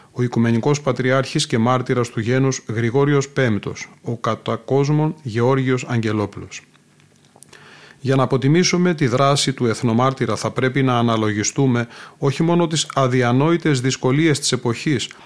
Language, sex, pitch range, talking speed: Greek, male, 115-140 Hz, 120 wpm